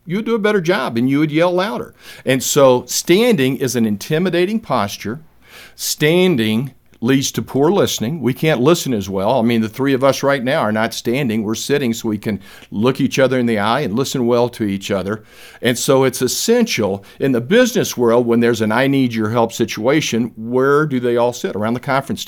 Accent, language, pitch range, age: American, English, 115-145 Hz, 50-69